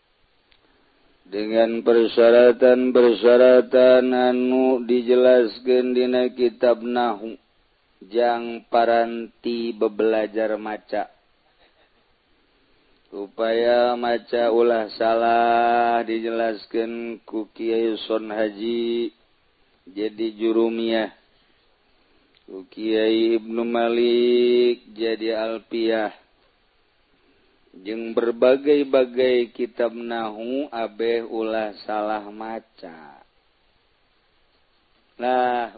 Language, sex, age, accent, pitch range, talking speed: Indonesian, male, 40-59, native, 115-120 Hz, 60 wpm